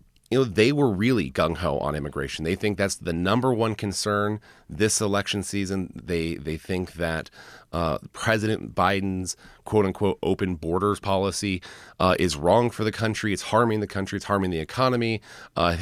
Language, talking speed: English, 165 wpm